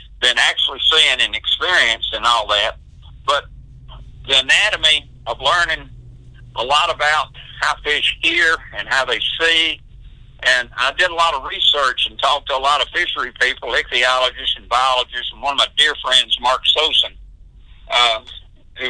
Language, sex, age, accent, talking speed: English, male, 60-79, American, 160 wpm